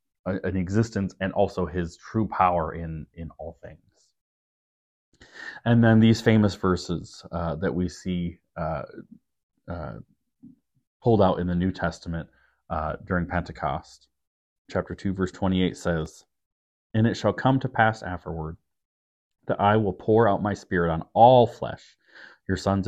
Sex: male